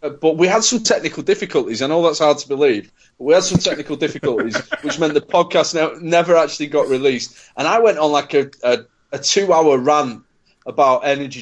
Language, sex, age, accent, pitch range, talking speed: English, male, 30-49, British, 130-165 Hz, 205 wpm